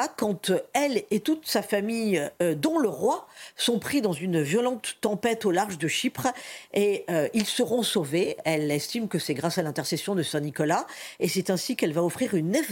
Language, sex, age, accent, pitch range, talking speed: French, female, 50-69, French, 175-255 Hz, 205 wpm